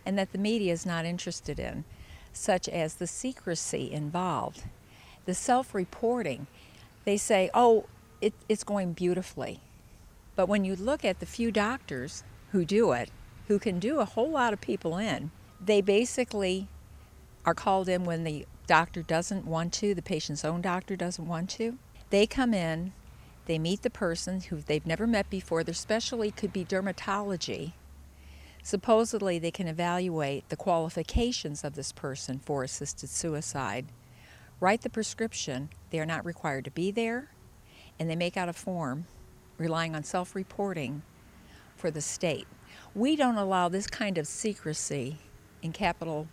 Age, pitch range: 50-69, 150-205 Hz